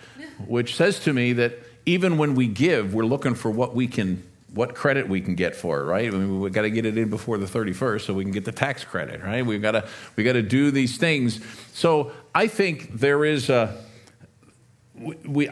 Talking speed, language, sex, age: 225 wpm, English, male, 50-69